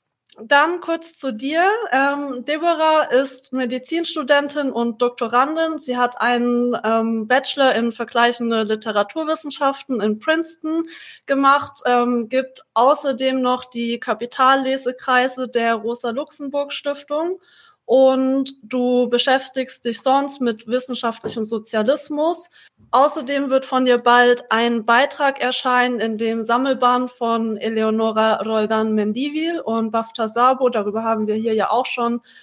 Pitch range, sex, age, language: 230-275 Hz, female, 20-39, German